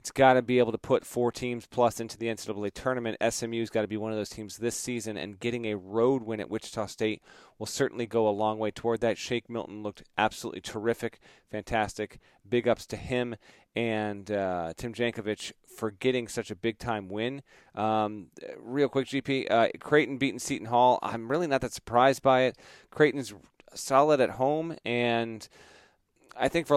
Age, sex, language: 40-59, male, English